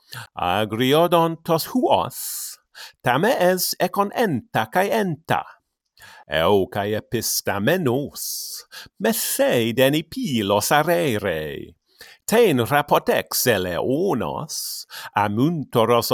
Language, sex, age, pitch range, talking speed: English, male, 50-69, 115-180 Hz, 75 wpm